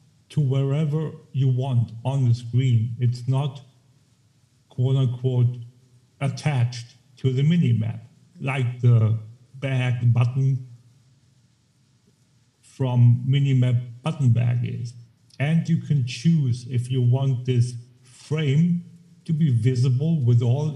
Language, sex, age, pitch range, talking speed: English, male, 50-69, 120-135 Hz, 110 wpm